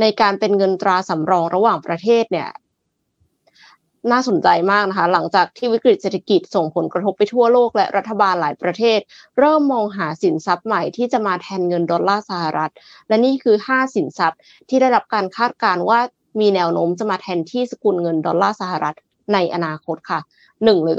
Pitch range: 180-235 Hz